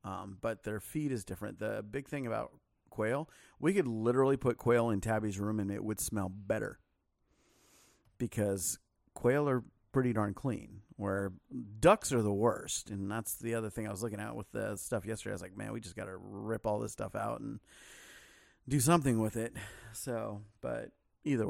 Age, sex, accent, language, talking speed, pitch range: 40-59, male, American, English, 195 wpm, 105-120 Hz